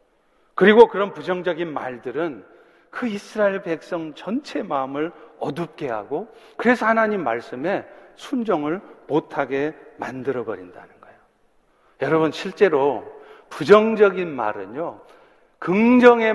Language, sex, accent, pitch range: Korean, male, native, 165-220 Hz